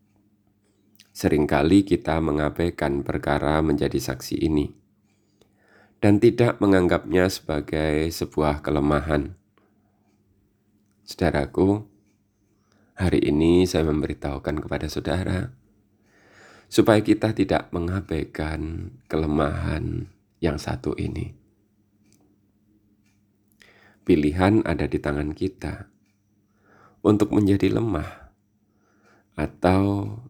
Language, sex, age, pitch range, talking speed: Indonesian, male, 30-49, 80-105 Hz, 75 wpm